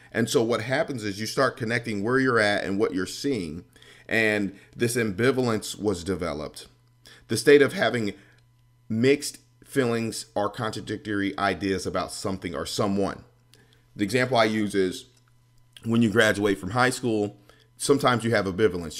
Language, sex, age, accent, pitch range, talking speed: English, male, 40-59, American, 100-125 Hz, 150 wpm